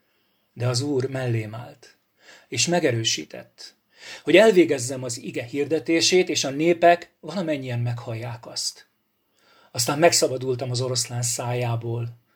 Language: Hungarian